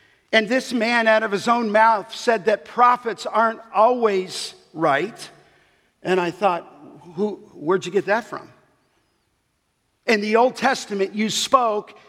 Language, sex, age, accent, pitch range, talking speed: English, male, 50-69, American, 200-245 Hz, 145 wpm